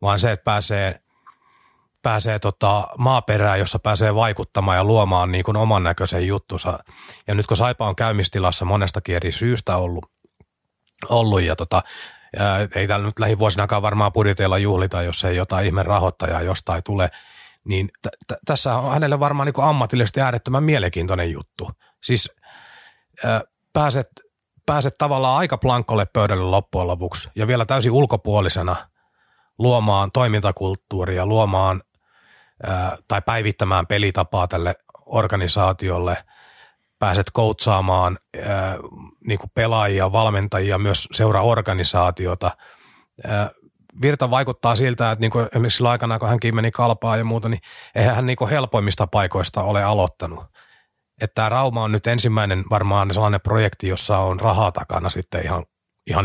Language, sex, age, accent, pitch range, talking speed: Finnish, male, 30-49, native, 95-115 Hz, 140 wpm